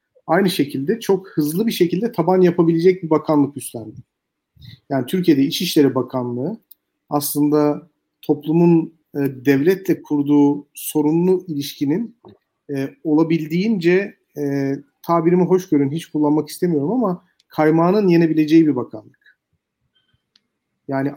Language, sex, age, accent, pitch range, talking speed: Turkish, male, 40-59, native, 145-175 Hz, 105 wpm